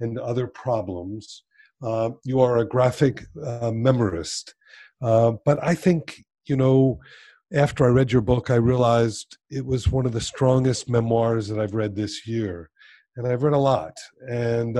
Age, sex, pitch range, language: 50-69, male, 115-145 Hz, English